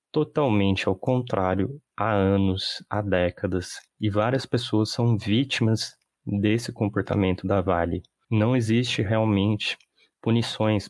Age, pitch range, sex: 20-39, 95-115 Hz, male